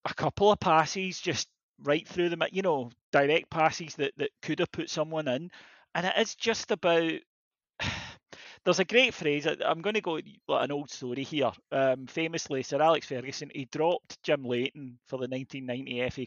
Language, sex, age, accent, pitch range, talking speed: English, male, 30-49, British, 135-170 Hz, 180 wpm